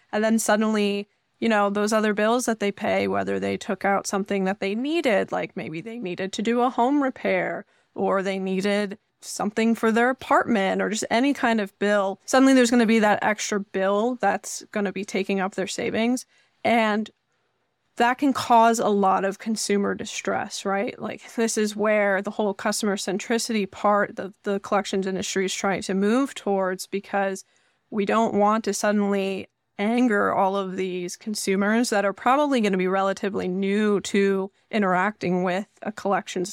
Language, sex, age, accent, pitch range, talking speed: English, female, 20-39, American, 195-225 Hz, 180 wpm